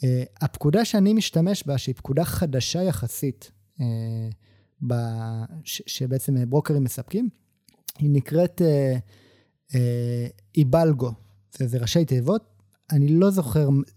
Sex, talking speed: male, 110 wpm